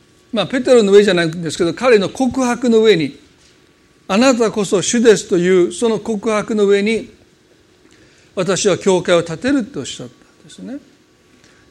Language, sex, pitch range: Japanese, male, 180-235 Hz